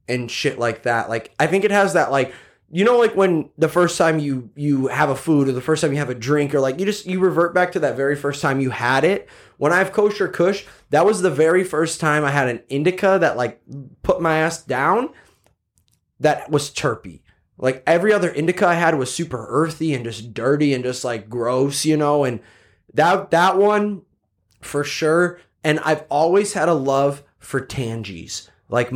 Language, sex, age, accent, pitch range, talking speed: English, male, 20-39, American, 125-160 Hz, 215 wpm